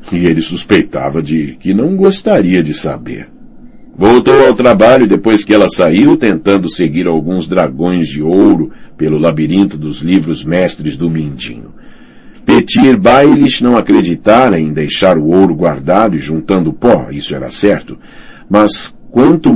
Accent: Brazilian